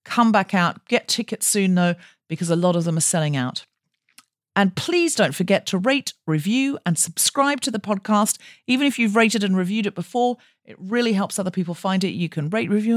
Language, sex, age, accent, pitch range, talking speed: English, female, 40-59, British, 185-250 Hz, 215 wpm